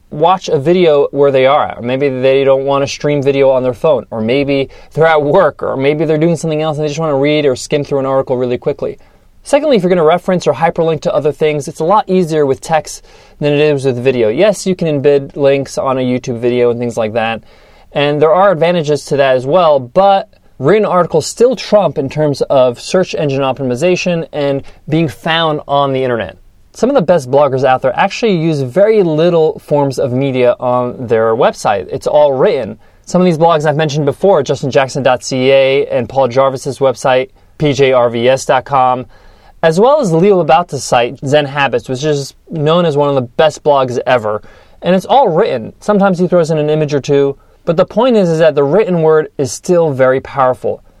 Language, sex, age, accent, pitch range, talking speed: English, male, 20-39, American, 130-165 Hz, 210 wpm